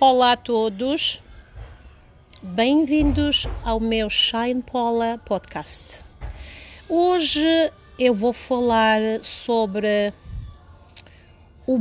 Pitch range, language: 205-255 Hz, English